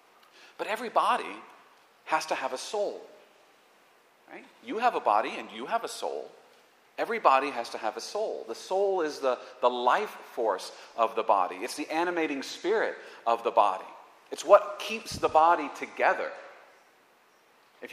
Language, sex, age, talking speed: English, male, 40-59, 155 wpm